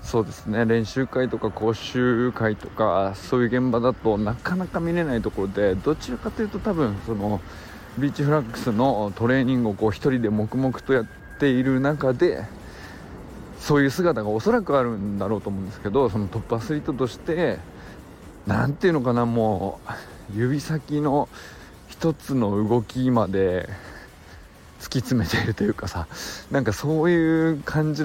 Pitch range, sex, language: 100-135 Hz, male, Japanese